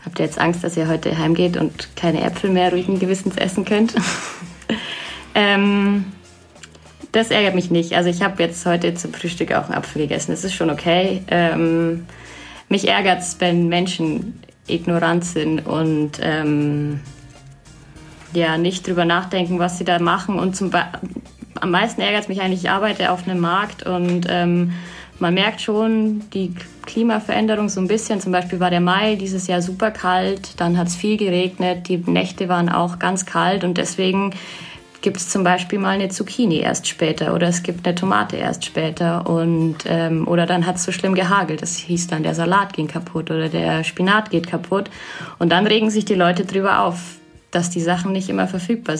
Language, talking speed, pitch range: German, 185 wpm, 170-195 Hz